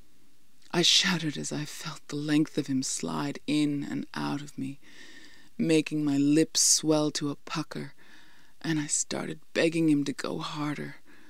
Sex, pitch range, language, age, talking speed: female, 145-170 Hz, English, 20-39, 160 wpm